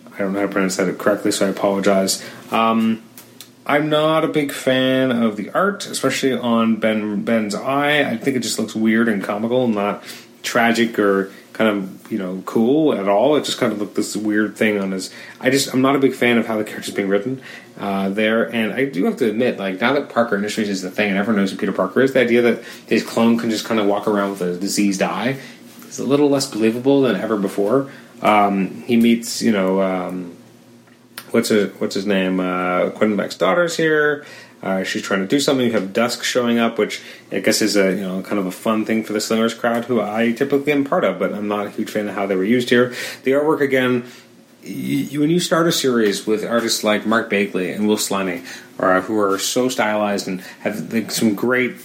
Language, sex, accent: English, male, American